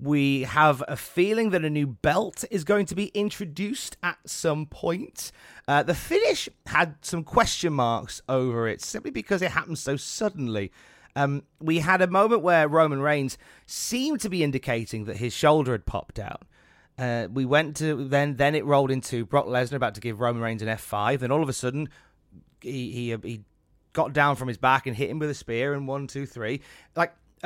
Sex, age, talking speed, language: male, 30-49, 200 wpm, English